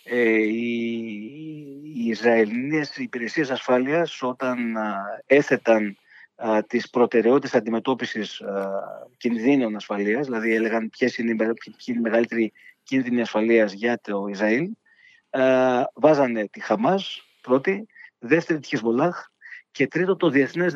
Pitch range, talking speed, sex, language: 115-145 Hz, 105 wpm, male, Greek